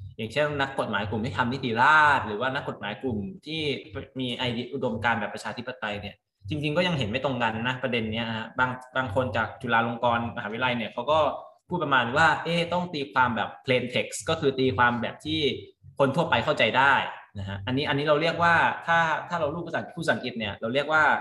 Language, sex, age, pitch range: Thai, male, 20-39, 110-140 Hz